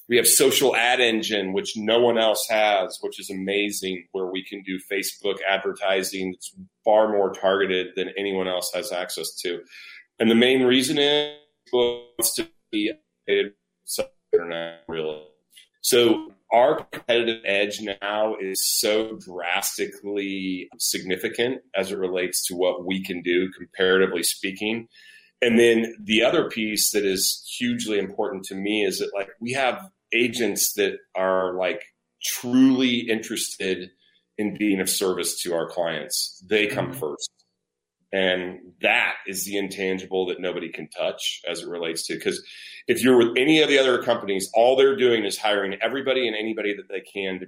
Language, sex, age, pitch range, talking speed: English, male, 30-49, 95-125 Hz, 155 wpm